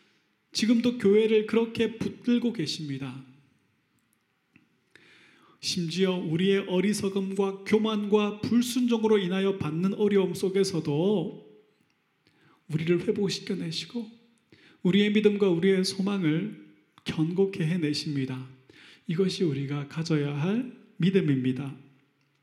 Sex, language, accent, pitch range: male, Korean, native, 155-200 Hz